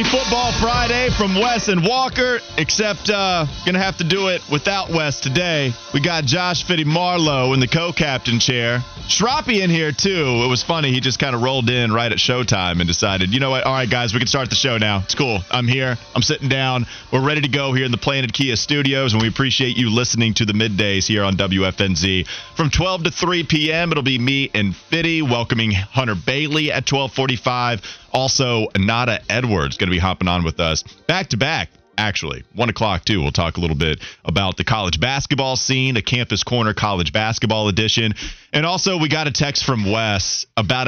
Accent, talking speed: American, 205 wpm